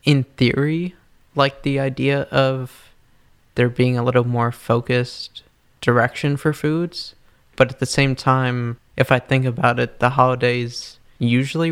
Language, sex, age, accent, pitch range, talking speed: English, male, 20-39, American, 120-135 Hz, 145 wpm